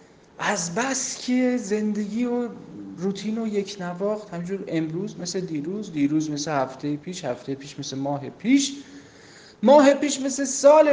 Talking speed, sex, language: 135 wpm, male, Persian